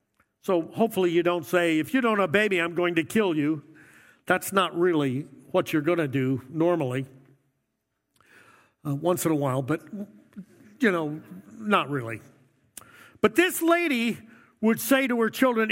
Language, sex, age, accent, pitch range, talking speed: English, male, 50-69, American, 165-255 Hz, 165 wpm